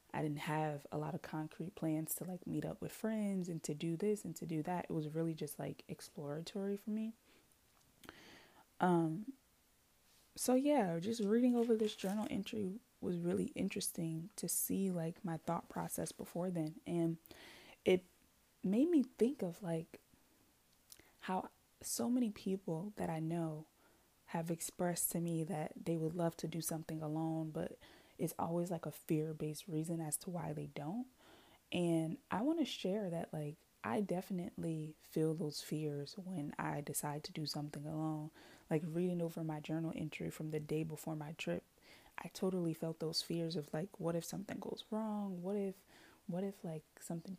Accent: American